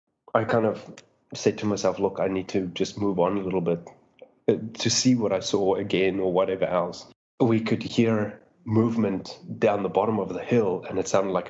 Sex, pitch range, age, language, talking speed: male, 95-115 Hz, 20-39, English, 205 wpm